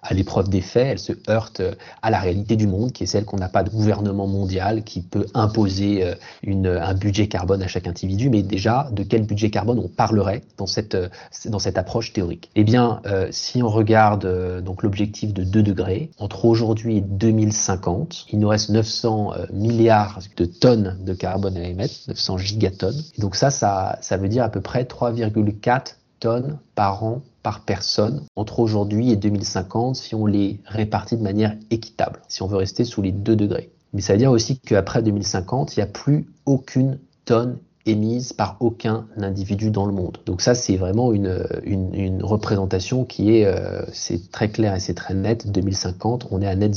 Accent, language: French, French